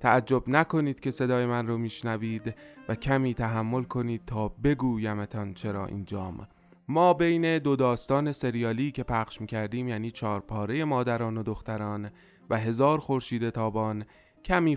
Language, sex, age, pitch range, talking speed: Persian, male, 20-39, 110-150 Hz, 135 wpm